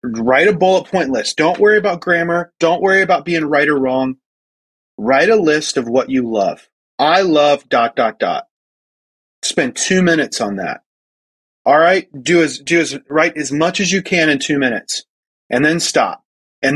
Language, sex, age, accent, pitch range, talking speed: English, male, 30-49, American, 130-180 Hz, 185 wpm